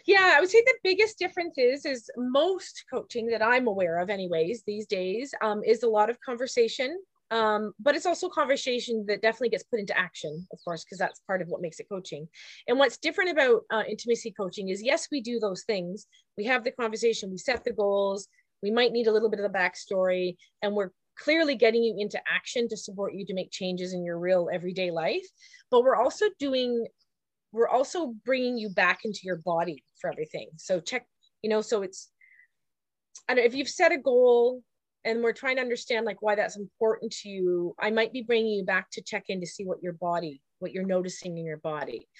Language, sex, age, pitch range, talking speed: English, female, 30-49, 185-255 Hz, 215 wpm